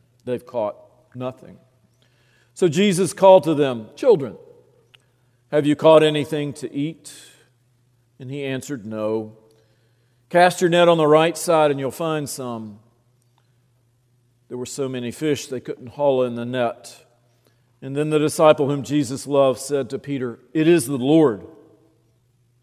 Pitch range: 120-155 Hz